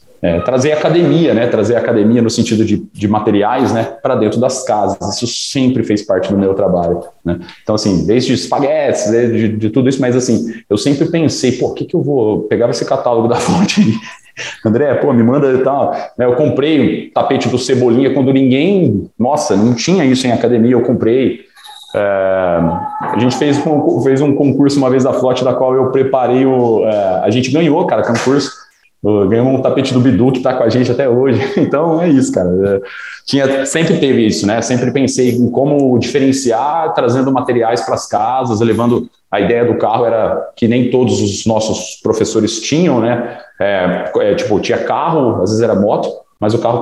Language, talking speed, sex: Portuguese, 190 wpm, male